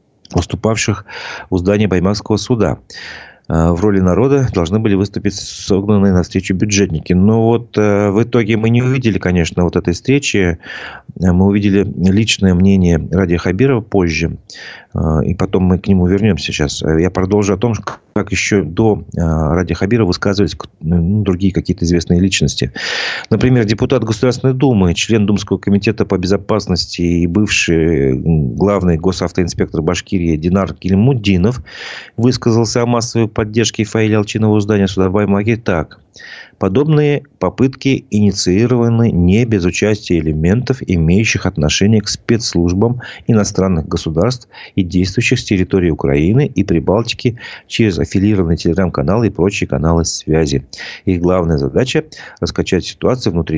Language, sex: Russian, male